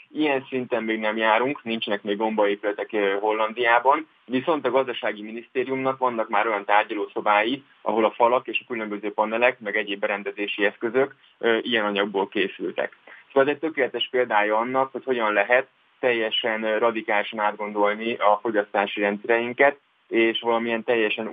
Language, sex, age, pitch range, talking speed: Hungarian, male, 20-39, 110-125 Hz, 140 wpm